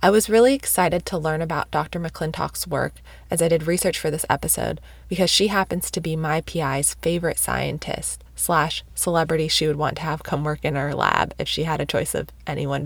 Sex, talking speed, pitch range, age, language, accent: female, 210 wpm, 150-185 Hz, 20-39, English, American